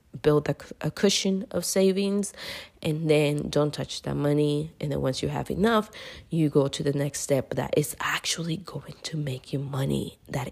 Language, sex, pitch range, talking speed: English, female, 140-165 Hz, 190 wpm